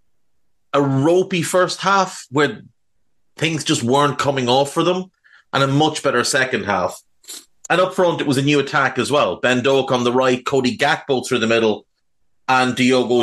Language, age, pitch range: English, 30-49, 115-145 Hz